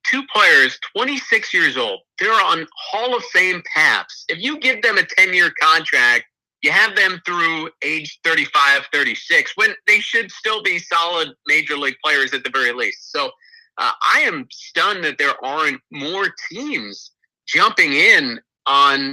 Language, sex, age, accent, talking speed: English, male, 30-49, American, 160 wpm